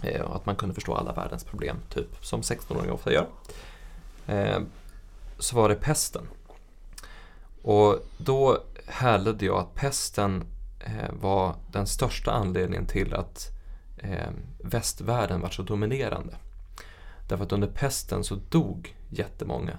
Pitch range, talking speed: 90-110 Hz, 125 wpm